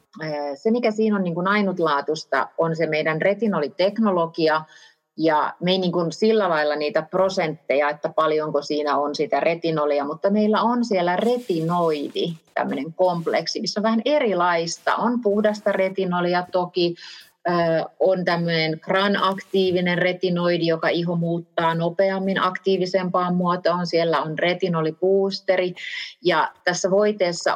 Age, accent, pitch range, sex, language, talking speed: 30-49, native, 155-195 Hz, female, Finnish, 115 wpm